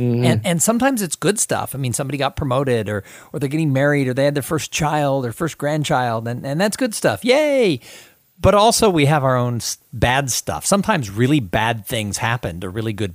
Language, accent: English, American